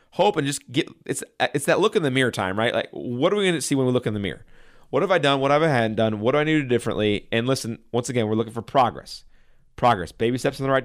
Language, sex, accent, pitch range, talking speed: English, male, American, 130-165 Hz, 315 wpm